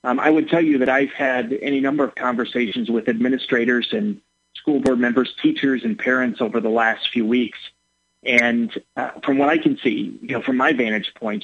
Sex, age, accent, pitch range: male, 40-59, American, 125-170 Hz